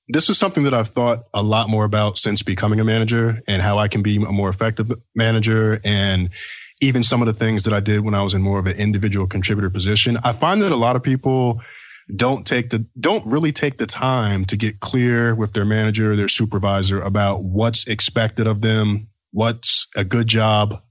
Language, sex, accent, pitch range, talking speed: English, male, American, 100-120 Hz, 215 wpm